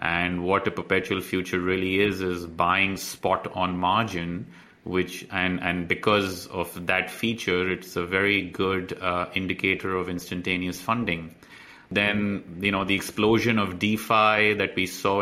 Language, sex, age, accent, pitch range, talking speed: English, male, 30-49, Indian, 90-100 Hz, 150 wpm